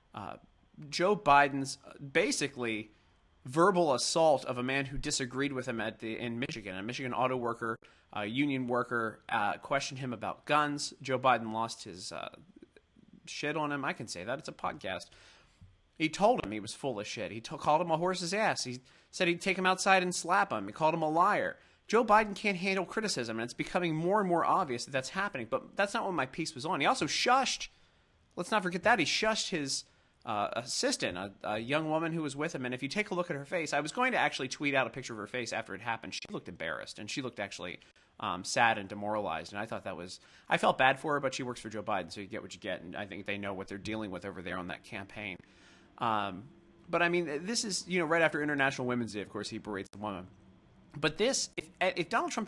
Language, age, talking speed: English, 30-49, 240 wpm